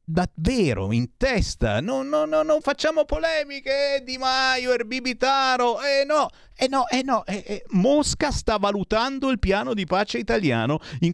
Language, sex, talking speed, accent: Italian, male, 180 wpm, native